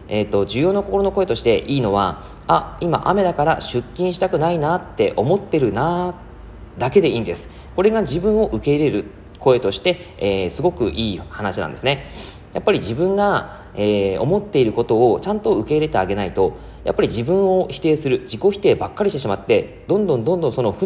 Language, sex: Japanese, male